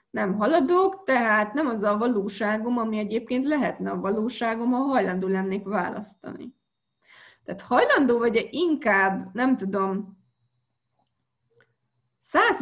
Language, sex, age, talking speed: Hungarian, female, 20-39, 110 wpm